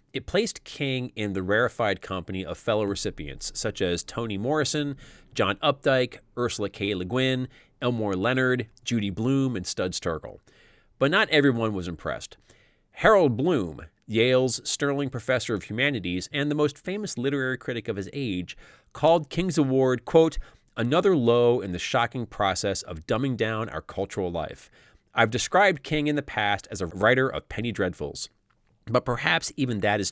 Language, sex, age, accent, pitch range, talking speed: English, male, 30-49, American, 105-150 Hz, 160 wpm